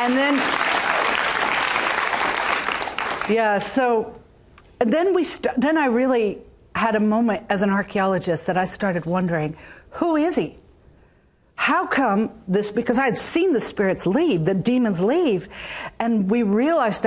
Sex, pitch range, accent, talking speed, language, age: female, 190-245 Hz, American, 130 wpm, English, 50-69